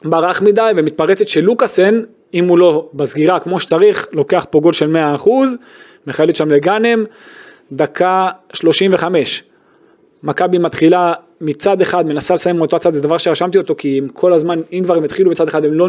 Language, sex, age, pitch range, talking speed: Hebrew, male, 20-39, 160-215 Hz, 165 wpm